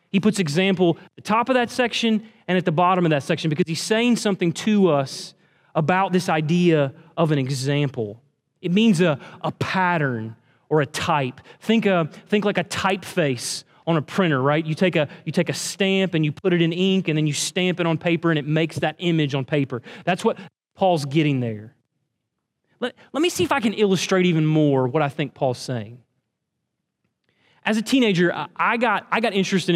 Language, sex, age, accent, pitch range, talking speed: English, male, 30-49, American, 145-190 Hz, 195 wpm